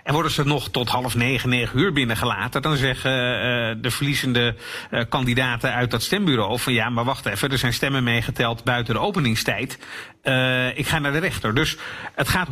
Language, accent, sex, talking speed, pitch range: Dutch, Dutch, male, 195 wpm, 125-160 Hz